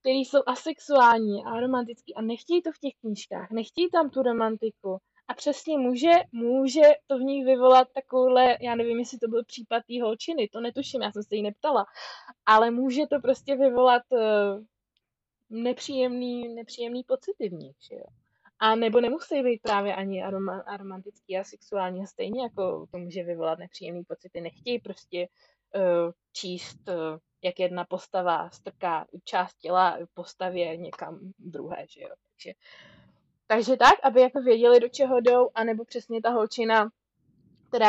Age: 20-39